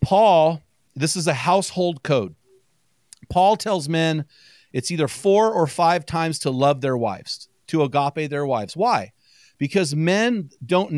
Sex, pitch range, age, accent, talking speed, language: male, 140-185 Hz, 40-59, American, 150 wpm, English